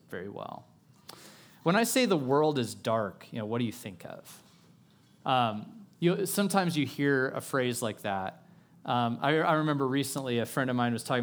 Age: 30-49